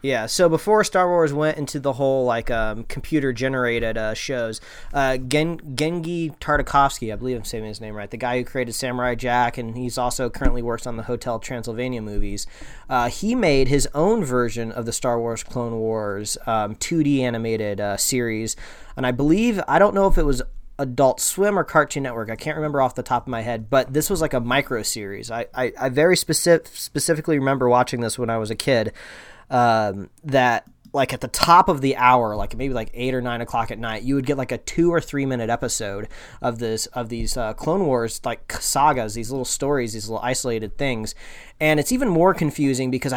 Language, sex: English, male